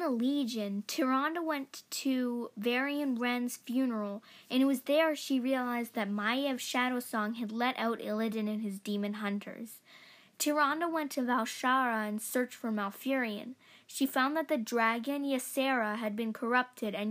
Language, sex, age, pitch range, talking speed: English, female, 10-29, 220-265 Hz, 150 wpm